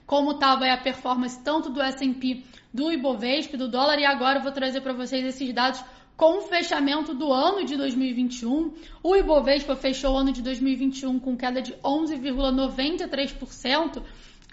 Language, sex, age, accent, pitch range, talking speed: Portuguese, female, 10-29, Brazilian, 260-295 Hz, 155 wpm